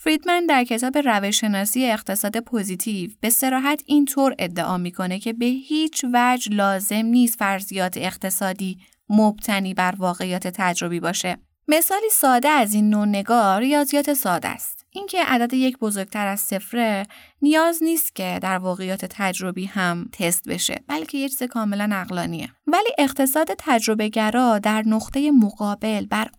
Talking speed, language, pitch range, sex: 140 wpm, Persian, 200-255 Hz, female